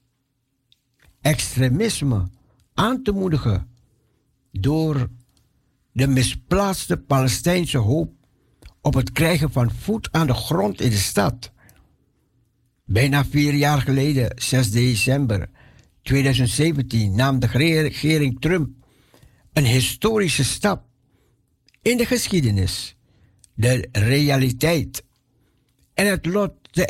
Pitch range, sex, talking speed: 115-155 Hz, male, 95 wpm